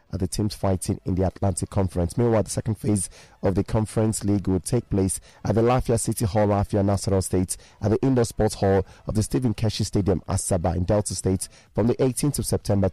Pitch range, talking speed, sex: 100-115 Hz, 215 wpm, male